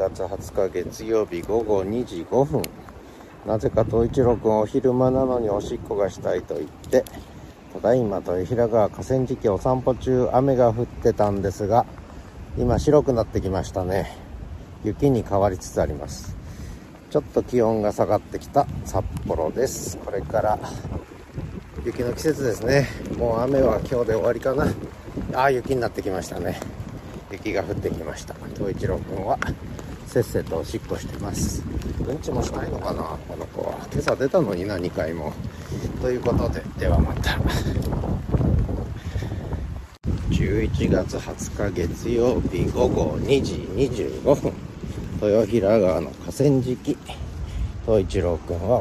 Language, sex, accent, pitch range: Japanese, male, native, 90-120 Hz